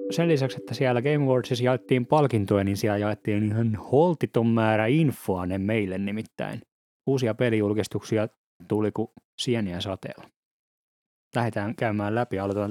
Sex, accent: male, native